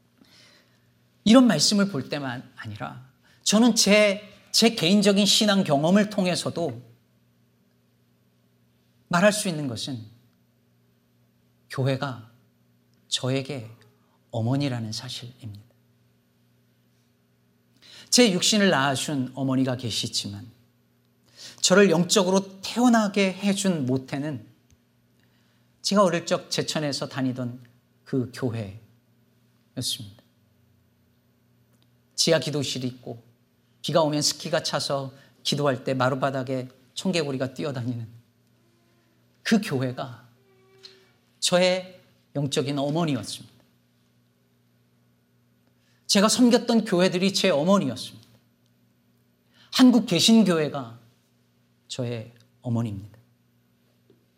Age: 40-59